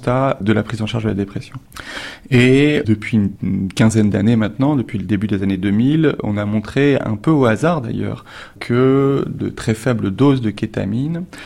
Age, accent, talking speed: 30-49, French, 185 wpm